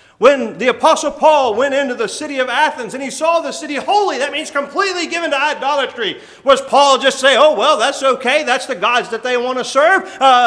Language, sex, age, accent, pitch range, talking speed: English, male, 40-59, American, 195-310 Hz, 225 wpm